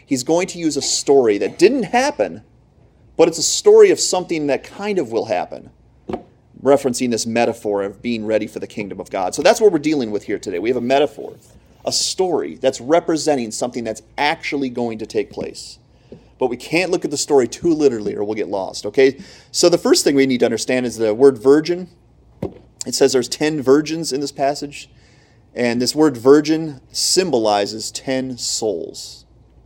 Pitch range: 120-165 Hz